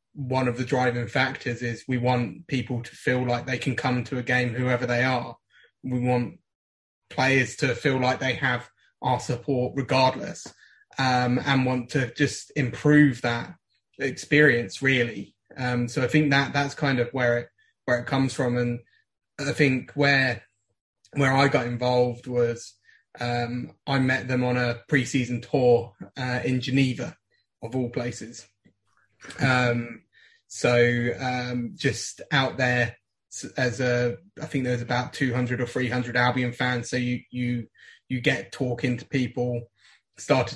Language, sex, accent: English, male, British